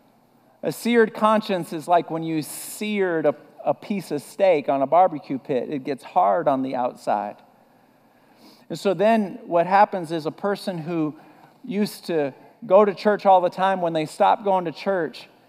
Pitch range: 180-235 Hz